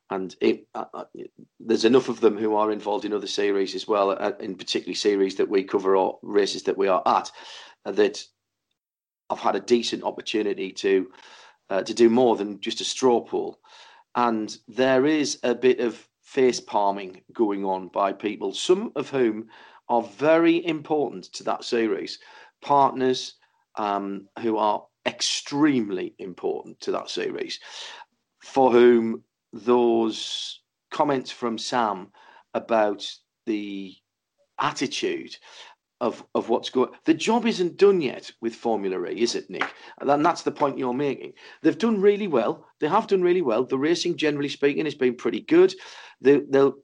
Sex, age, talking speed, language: male, 40-59, 160 wpm, English